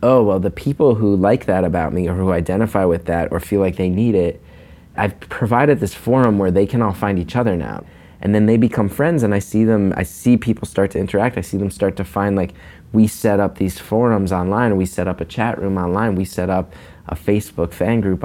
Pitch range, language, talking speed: 90-110 Hz, English, 245 wpm